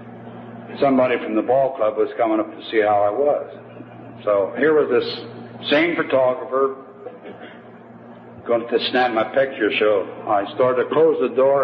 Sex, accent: male, American